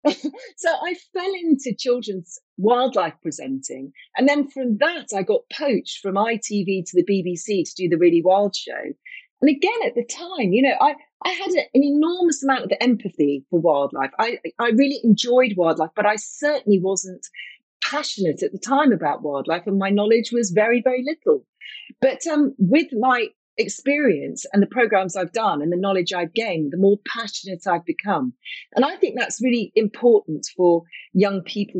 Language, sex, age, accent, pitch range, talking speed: English, female, 40-59, British, 195-280 Hz, 175 wpm